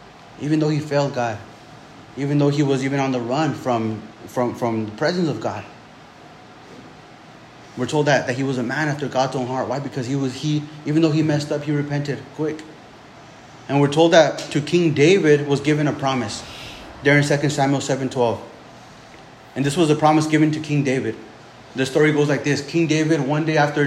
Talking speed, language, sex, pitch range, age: 200 wpm, English, male, 135-165 Hz, 30-49